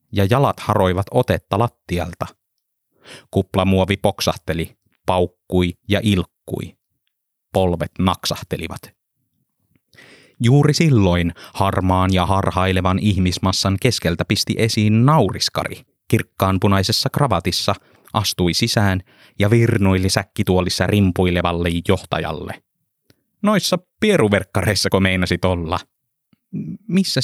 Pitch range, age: 95-125 Hz, 30-49